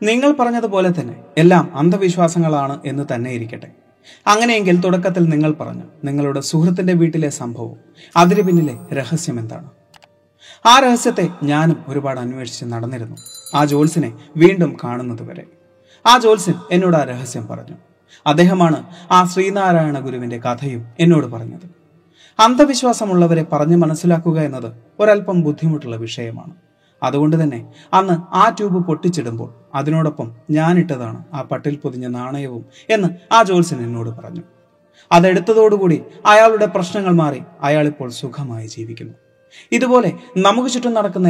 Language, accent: Malayalam, native